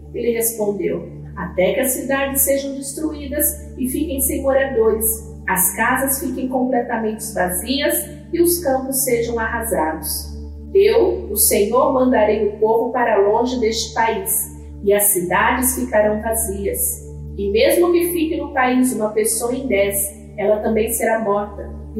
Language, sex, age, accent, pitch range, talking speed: Portuguese, female, 40-59, Brazilian, 200-270 Hz, 140 wpm